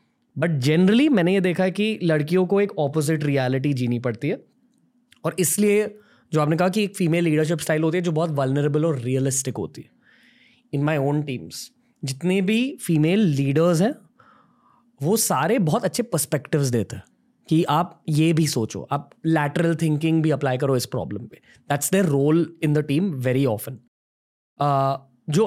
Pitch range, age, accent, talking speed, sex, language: 145-195 Hz, 20-39, native, 170 wpm, male, Hindi